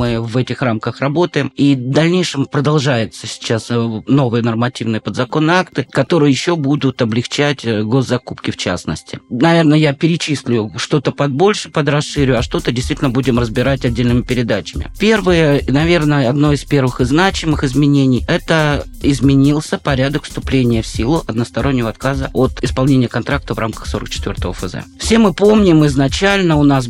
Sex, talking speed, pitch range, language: male, 145 wpm, 125-150 Hz, Russian